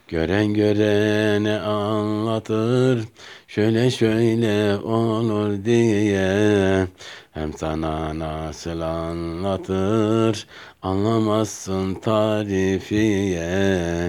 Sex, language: male, Turkish